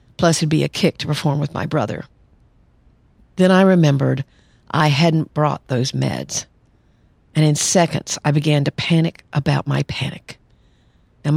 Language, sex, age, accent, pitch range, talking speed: English, female, 50-69, American, 145-170 Hz, 155 wpm